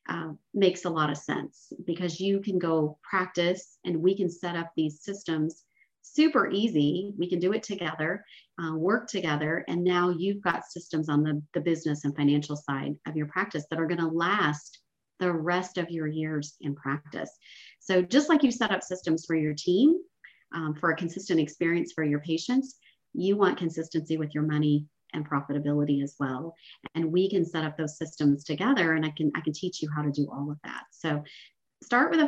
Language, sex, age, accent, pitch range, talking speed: English, male, 40-59, American, 155-195 Hz, 200 wpm